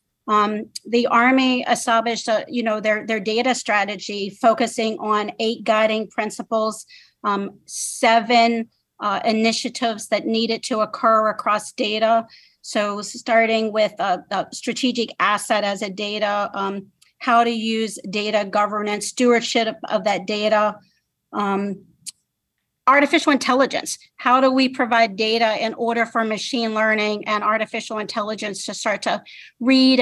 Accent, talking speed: American, 135 wpm